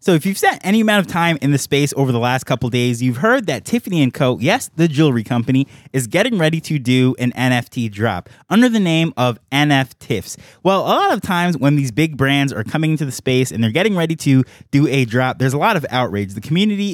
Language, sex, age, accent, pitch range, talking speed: English, male, 20-39, American, 130-175 Hz, 235 wpm